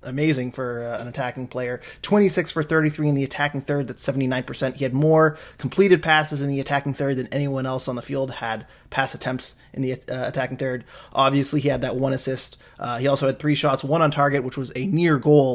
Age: 20-39